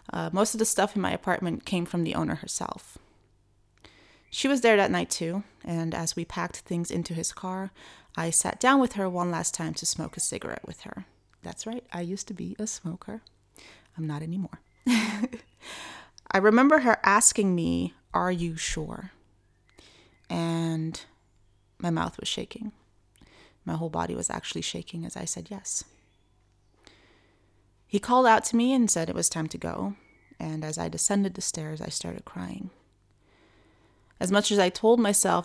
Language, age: English, 30-49